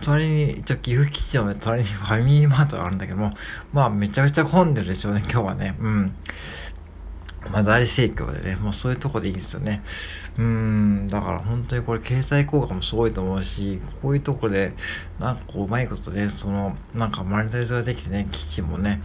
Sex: male